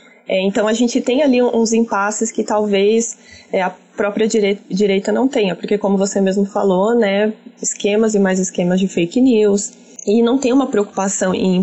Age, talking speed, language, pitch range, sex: 20-39, 180 wpm, Portuguese, 195-230 Hz, female